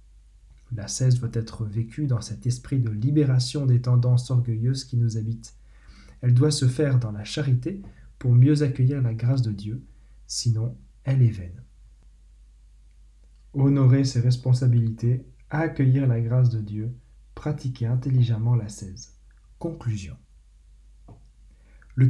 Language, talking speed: French, 135 wpm